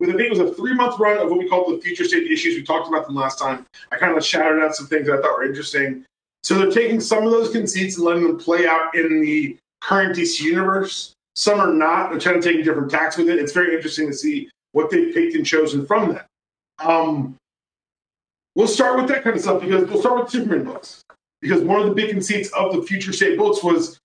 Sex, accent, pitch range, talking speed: male, American, 165-255 Hz, 245 wpm